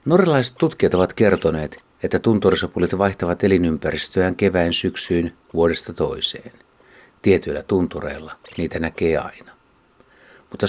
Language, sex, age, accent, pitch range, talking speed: Finnish, male, 60-79, native, 80-100 Hz, 100 wpm